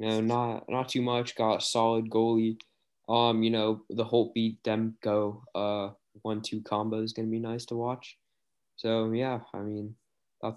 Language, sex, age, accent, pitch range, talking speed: English, male, 20-39, American, 105-120 Hz, 175 wpm